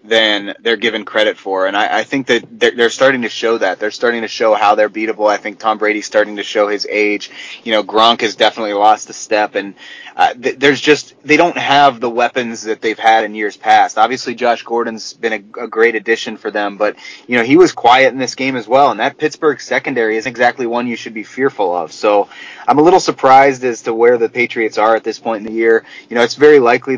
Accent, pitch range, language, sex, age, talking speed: American, 105-130 Hz, English, male, 20-39, 245 wpm